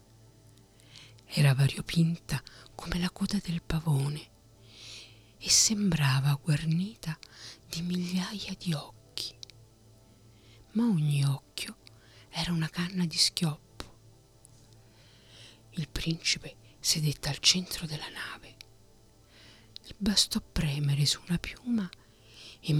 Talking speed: 95 wpm